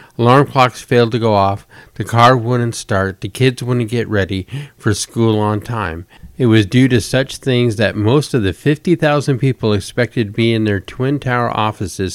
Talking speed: 195 wpm